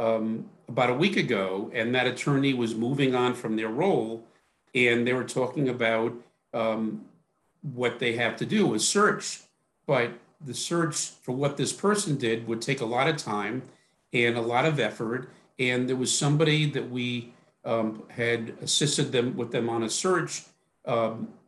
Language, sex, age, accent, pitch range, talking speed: English, male, 50-69, American, 120-150 Hz, 175 wpm